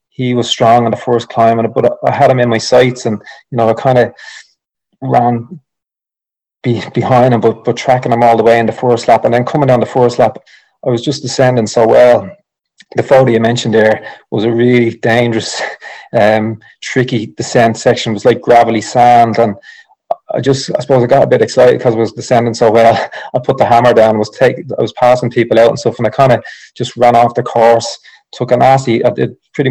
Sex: male